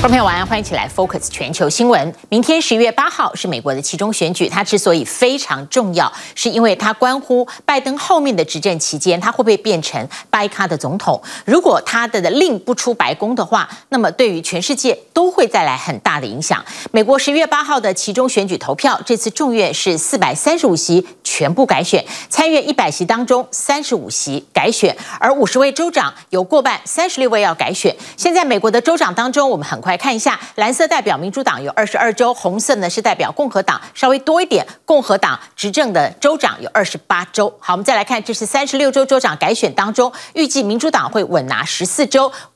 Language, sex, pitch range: Chinese, female, 195-280 Hz